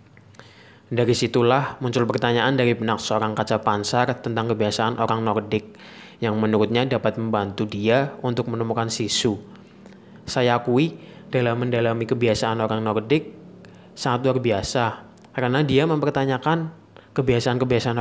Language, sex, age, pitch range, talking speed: Indonesian, male, 20-39, 115-135 Hz, 115 wpm